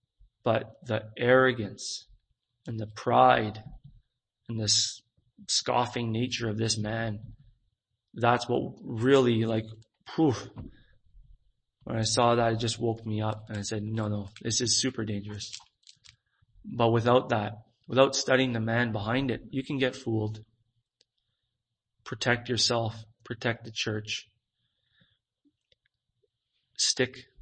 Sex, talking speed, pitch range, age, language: male, 120 wpm, 110-120 Hz, 30-49, English